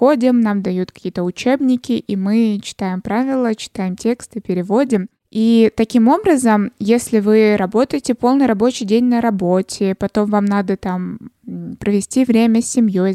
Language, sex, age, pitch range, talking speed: Russian, female, 20-39, 200-235 Hz, 135 wpm